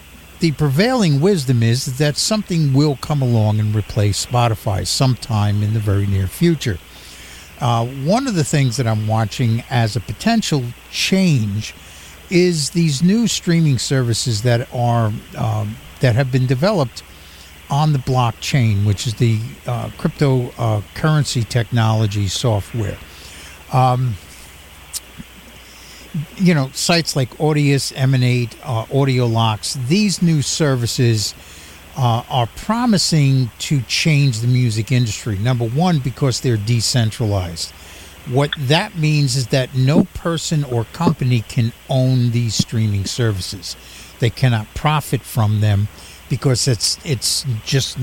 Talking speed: 125 wpm